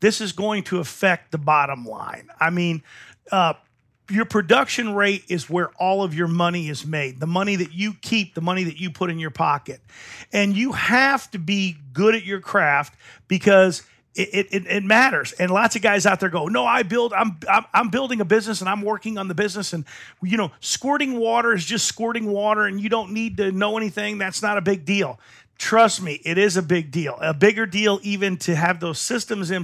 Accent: American